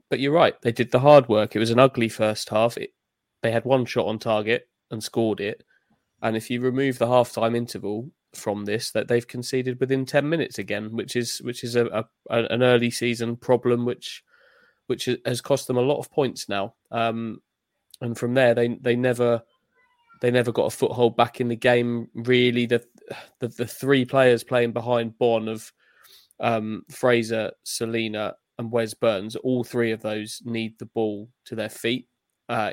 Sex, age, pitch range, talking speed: male, 20-39, 115-125 Hz, 195 wpm